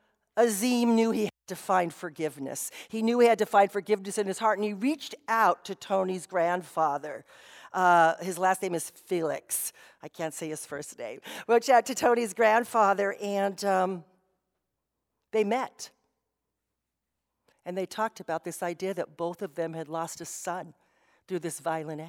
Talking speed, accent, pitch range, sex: 170 wpm, American, 170-215 Hz, female